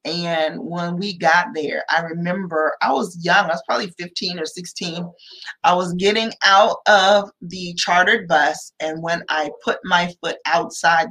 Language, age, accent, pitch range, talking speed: English, 30-49, American, 170-250 Hz, 165 wpm